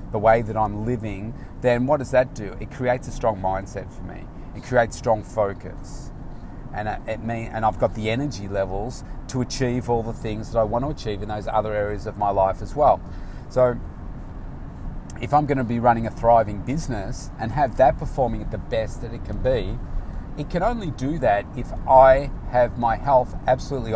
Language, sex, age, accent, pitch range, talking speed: English, male, 30-49, Australian, 100-125 Hz, 200 wpm